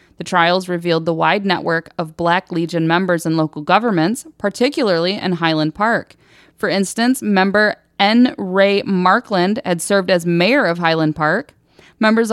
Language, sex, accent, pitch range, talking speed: English, female, American, 165-195 Hz, 150 wpm